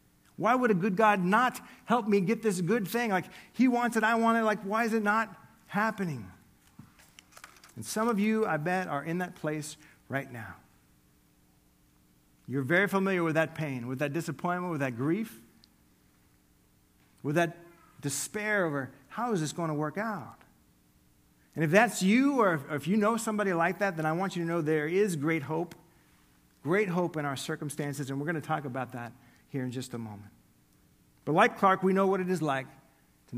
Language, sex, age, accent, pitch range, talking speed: English, male, 50-69, American, 135-200 Hz, 195 wpm